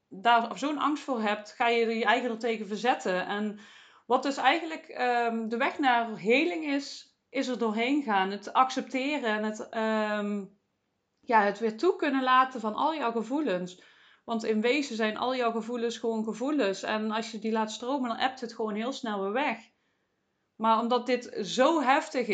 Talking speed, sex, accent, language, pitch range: 185 wpm, female, Dutch, Dutch, 215-255 Hz